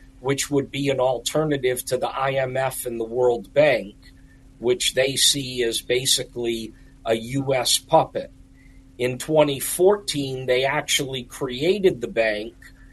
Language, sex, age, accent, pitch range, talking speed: English, male, 40-59, American, 125-145 Hz, 125 wpm